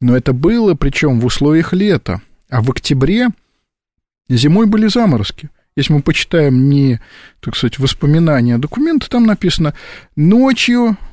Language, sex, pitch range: Russian, male, 120-165 Hz